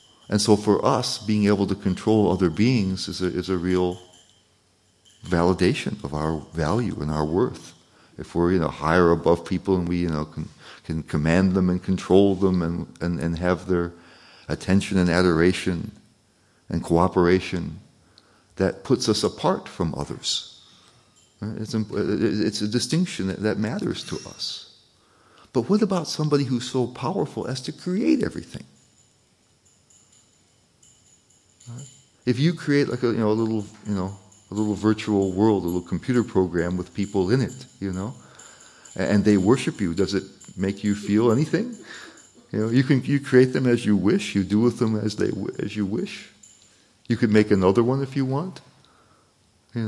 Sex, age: male, 50-69